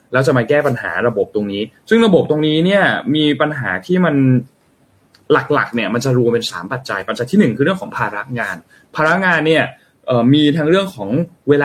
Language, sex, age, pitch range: Thai, male, 20-39, 120-160 Hz